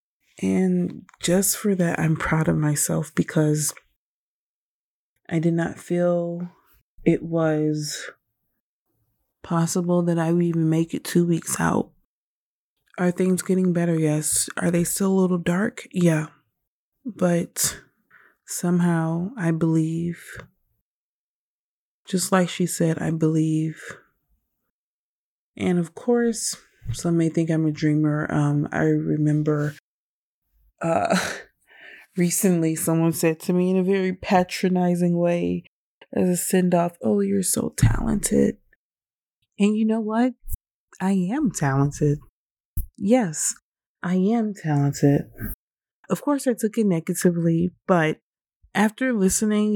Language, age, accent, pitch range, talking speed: English, 30-49, American, 160-185 Hz, 120 wpm